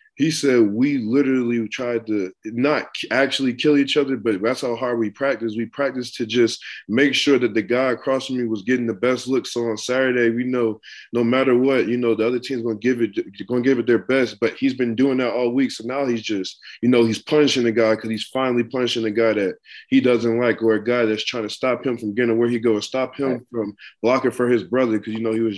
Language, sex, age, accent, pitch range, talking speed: English, male, 20-39, American, 115-140 Hz, 255 wpm